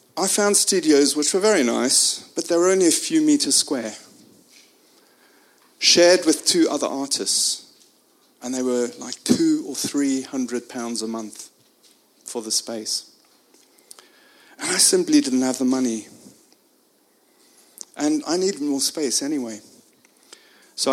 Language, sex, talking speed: English, male, 140 wpm